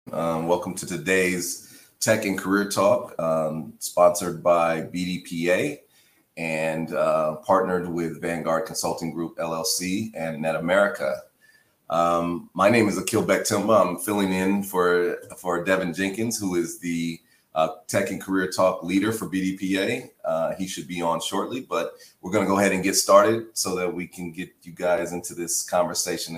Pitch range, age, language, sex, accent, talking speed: 85-95 Hz, 30-49, English, male, American, 160 wpm